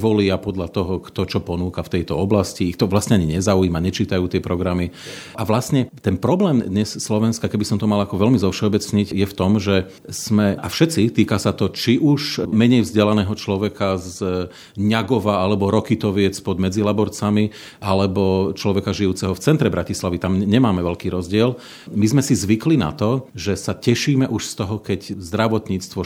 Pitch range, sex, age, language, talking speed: 95-115 Hz, male, 40-59, Slovak, 175 wpm